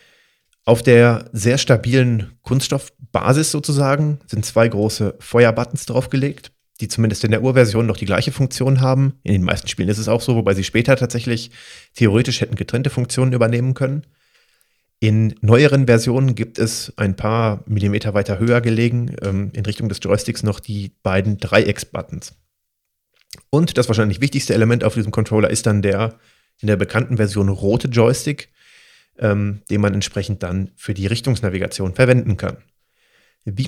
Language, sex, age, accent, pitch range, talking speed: German, male, 30-49, German, 105-130 Hz, 150 wpm